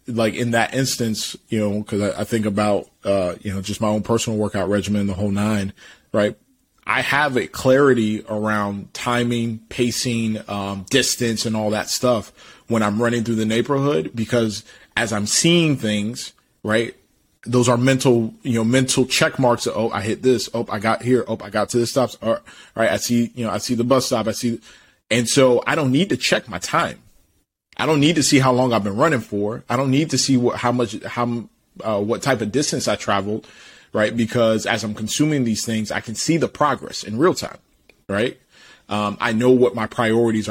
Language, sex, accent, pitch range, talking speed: English, male, American, 105-125 Hz, 210 wpm